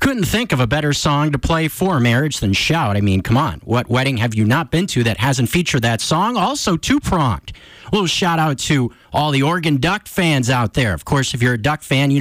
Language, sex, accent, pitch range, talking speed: English, male, American, 120-170 Hz, 245 wpm